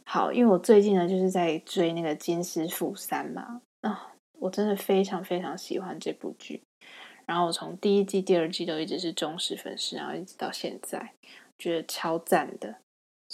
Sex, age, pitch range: female, 20-39, 175-220 Hz